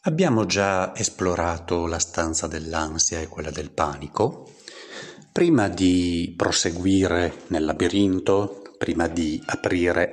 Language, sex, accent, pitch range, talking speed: Italian, male, native, 85-120 Hz, 105 wpm